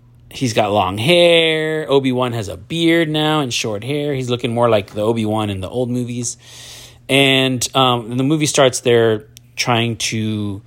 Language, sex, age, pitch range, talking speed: English, male, 30-49, 110-130 Hz, 175 wpm